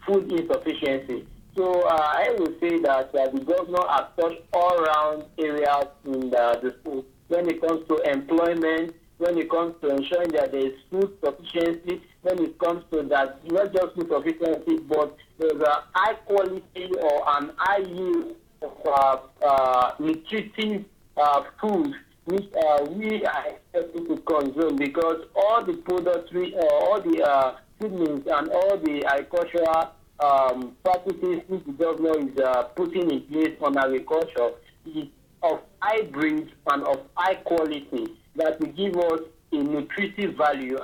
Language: English